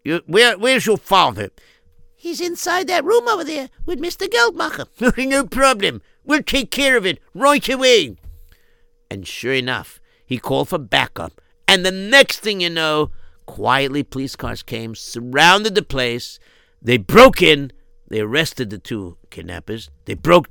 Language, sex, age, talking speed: English, male, 60-79, 150 wpm